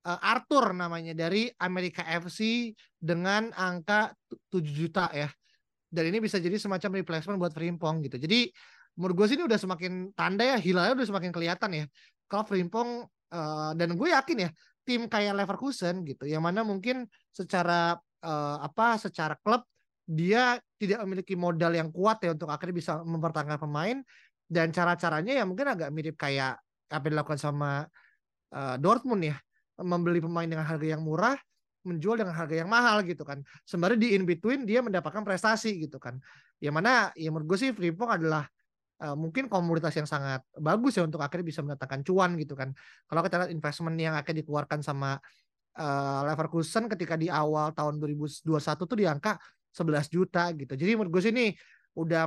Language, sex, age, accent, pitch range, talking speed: Indonesian, male, 20-39, native, 155-205 Hz, 165 wpm